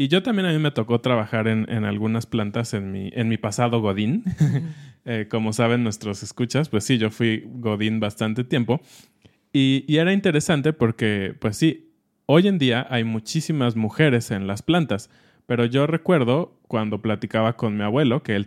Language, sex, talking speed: Spanish, male, 180 wpm